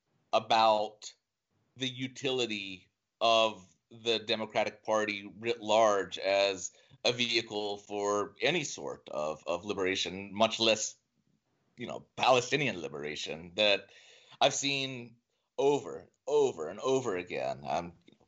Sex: male